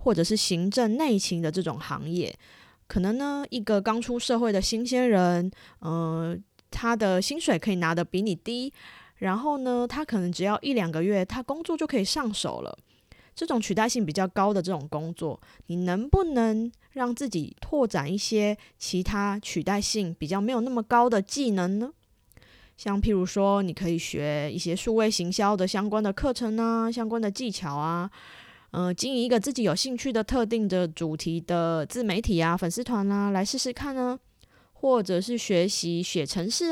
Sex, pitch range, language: female, 175-240 Hz, Chinese